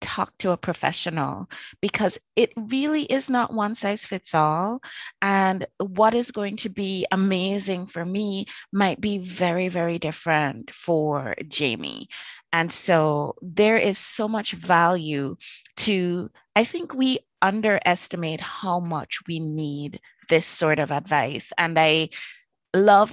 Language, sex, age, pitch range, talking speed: English, female, 30-49, 165-215 Hz, 135 wpm